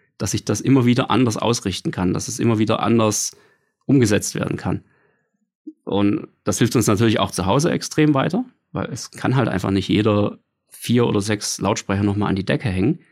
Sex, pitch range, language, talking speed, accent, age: male, 105-130 Hz, German, 190 wpm, German, 30-49